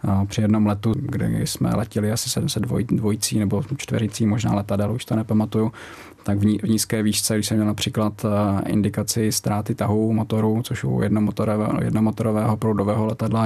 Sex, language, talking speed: male, Czech, 160 wpm